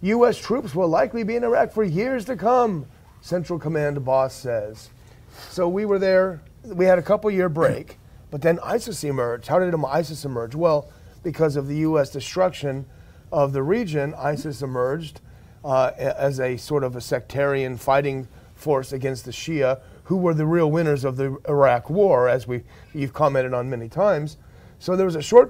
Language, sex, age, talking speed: English, male, 40-59, 180 wpm